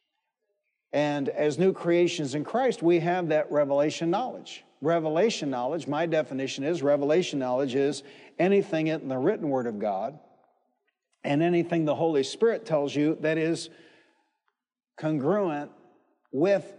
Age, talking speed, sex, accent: 60-79, 130 wpm, male, American